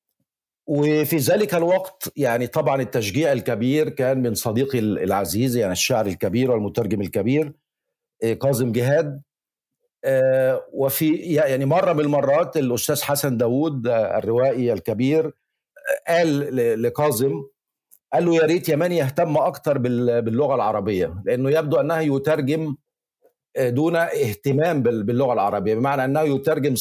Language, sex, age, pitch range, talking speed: Arabic, male, 50-69, 125-160 Hz, 110 wpm